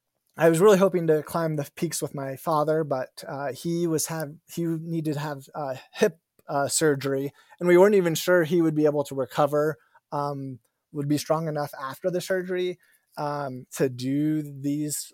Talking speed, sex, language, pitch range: 185 wpm, male, English, 140-160 Hz